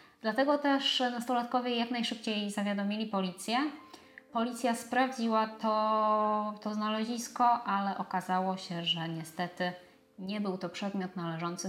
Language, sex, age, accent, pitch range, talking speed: Polish, female, 20-39, native, 185-230 Hz, 115 wpm